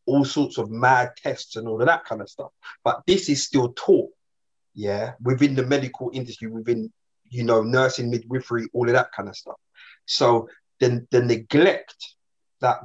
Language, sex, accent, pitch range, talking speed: English, male, British, 115-135 Hz, 175 wpm